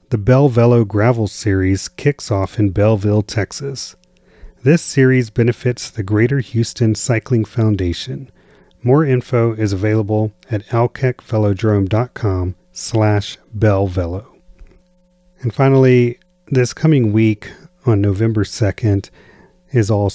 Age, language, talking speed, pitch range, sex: 40-59, English, 105 wpm, 100-125 Hz, male